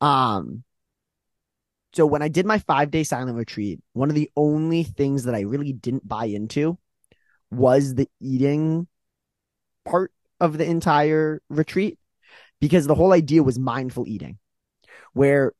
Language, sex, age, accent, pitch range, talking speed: English, male, 20-39, American, 125-155 Hz, 140 wpm